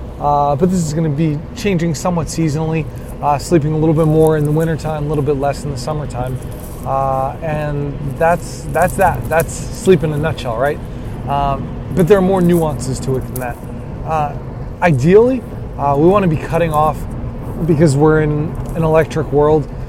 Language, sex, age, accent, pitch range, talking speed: English, male, 20-39, American, 130-165 Hz, 185 wpm